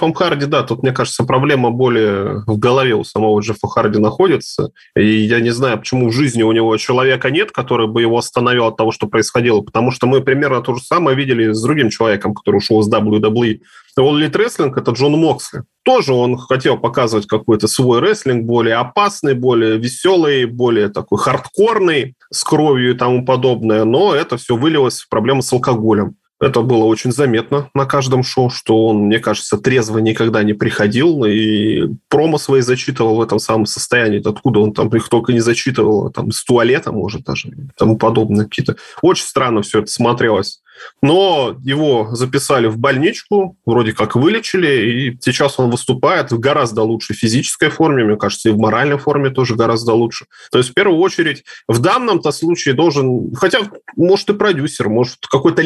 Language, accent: Russian, native